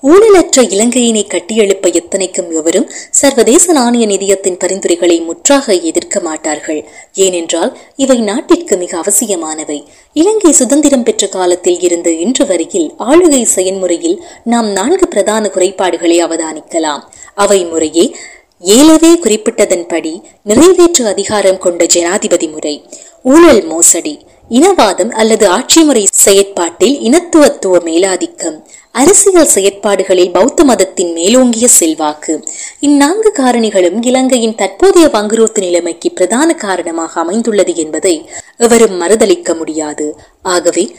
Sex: female